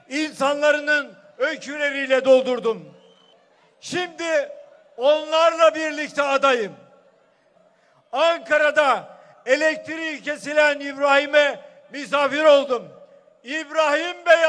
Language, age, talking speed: Turkish, 50-69, 60 wpm